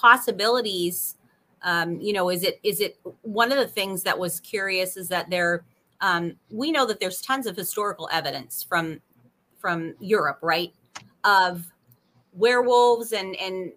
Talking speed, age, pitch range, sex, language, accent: 155 wpm, 30-49, 180-235 Hz, female, English, American